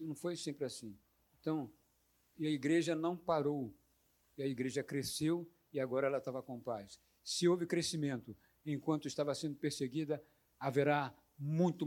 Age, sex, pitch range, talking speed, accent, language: 50-69, male, 135-175 Hz, 145 wpm, Brazilian, Portuguese